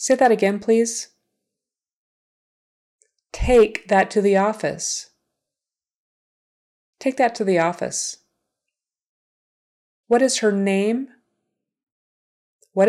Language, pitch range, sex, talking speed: English, 180-240 Hz, female, 90 wpm